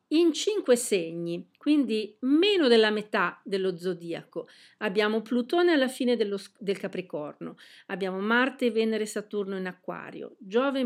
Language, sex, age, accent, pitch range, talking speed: Italian, female, 50-69, native, 190-235 Hz, 125 wpm